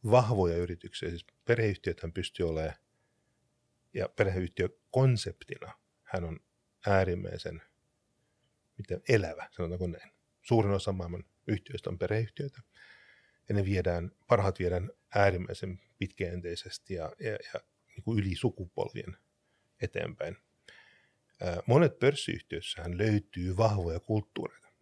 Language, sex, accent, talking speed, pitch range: Finnish, male, native, 100 wpm, 90-110 Hz